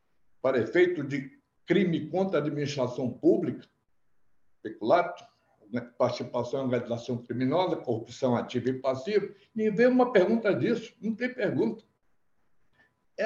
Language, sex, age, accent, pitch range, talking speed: Portuguese, male, 60-79, Brazilian, 135-200 Hz, 120 wpm